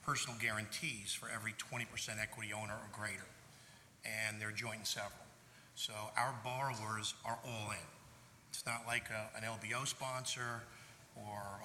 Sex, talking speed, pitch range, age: male, 140 wpm, 110-130 Hz, 50-69